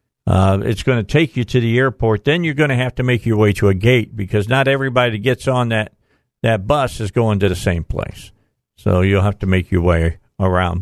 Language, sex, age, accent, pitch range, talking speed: English, male, 60-79, American, 95-125 Hz, 240 wpm